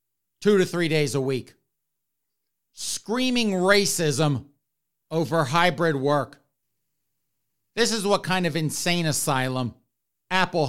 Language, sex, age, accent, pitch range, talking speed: English, male, 50-69, American, 140-175 Hz, 105 wpm